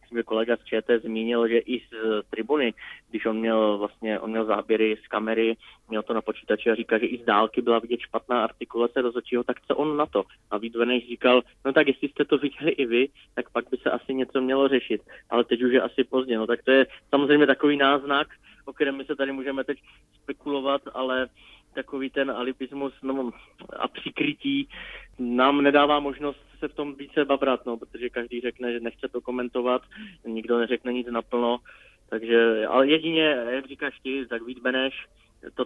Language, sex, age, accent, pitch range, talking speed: Czech, male, 20-39, native, 115-140 Hz, 190 wpm